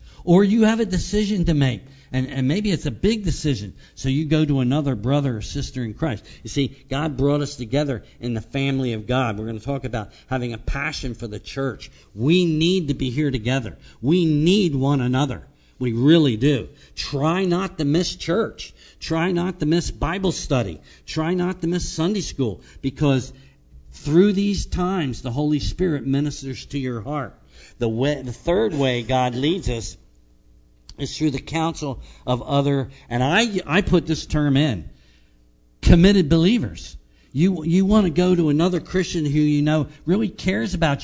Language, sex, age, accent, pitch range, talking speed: English, male, 50-69, American, 125-165 Hz, 180 wpm